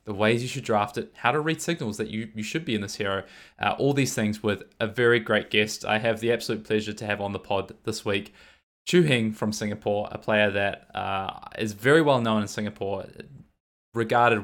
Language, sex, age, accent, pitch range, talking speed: English, male, 20-39, Australian, 105-115 Hz, 225 wpm